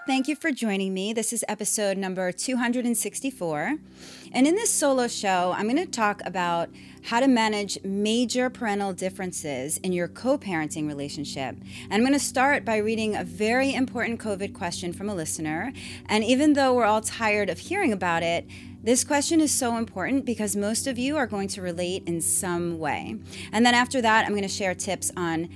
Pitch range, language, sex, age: 185-235 Hz, English, female, 30-49